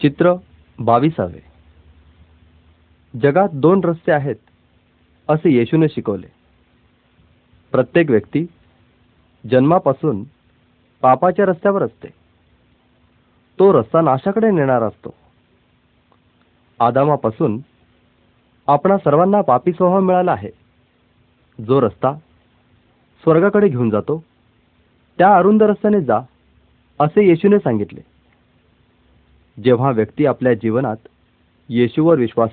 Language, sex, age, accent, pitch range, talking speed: Marathi, male, 40-59, native, 100-165 Hz, 85 wpm